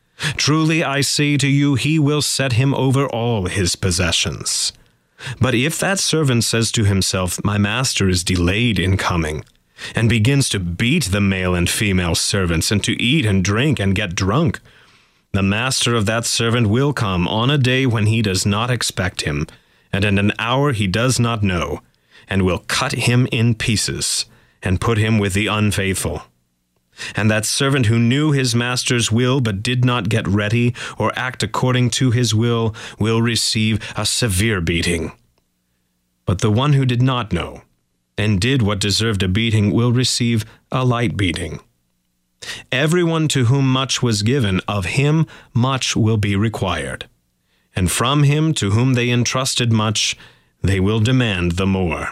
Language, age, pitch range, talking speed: English, 30-49, 95-125 Hz, 170 wpm